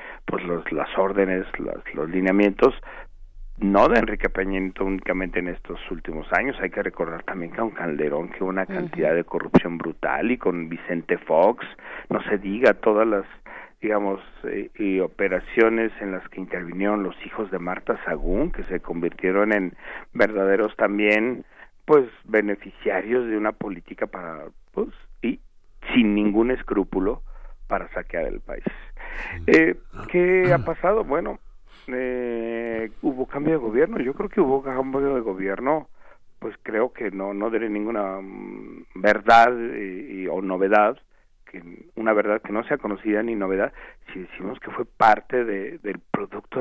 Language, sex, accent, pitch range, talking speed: Spanish, male, Mexican, 95-130 Hz, 155 wpm